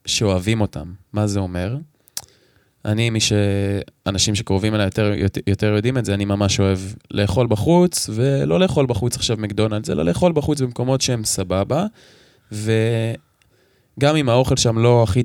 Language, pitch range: Hebrew, 105-130 Hz